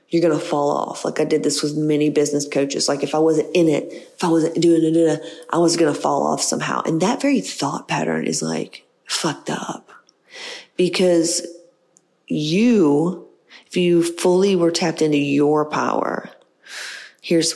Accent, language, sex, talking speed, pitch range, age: American, English, female, 175 wpm, 155-175 Hz, 30-49